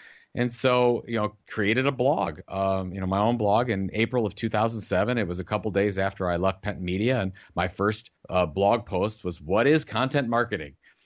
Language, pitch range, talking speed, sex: English, 95-120 Hz, 210 wpm, male